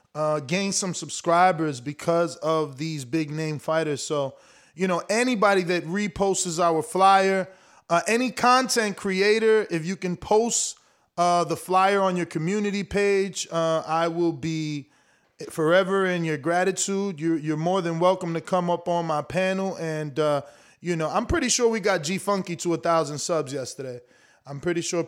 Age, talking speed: 20-39, 165 wpm